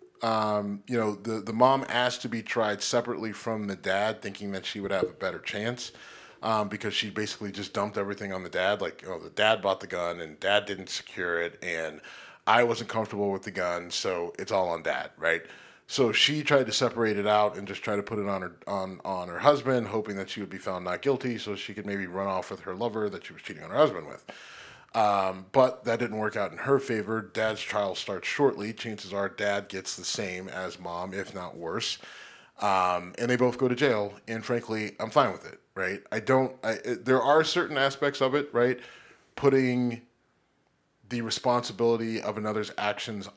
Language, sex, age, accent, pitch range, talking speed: English, male, 30-49, American, 100-120 Hz, 215 wpm